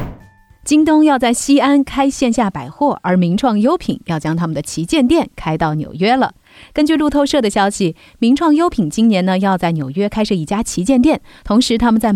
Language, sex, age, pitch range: Chinese, female, 30-49, 170-255 Hz